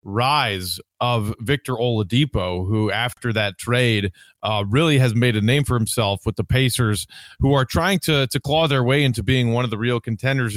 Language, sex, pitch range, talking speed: English, male, 120-150 Hz, 195 wpm